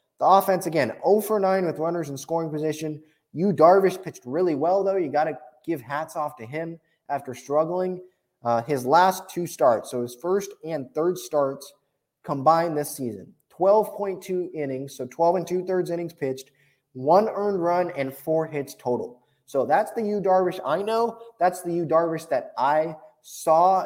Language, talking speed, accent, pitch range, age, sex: English, 175 wpm, American, 140-190 Hz, 20-39, male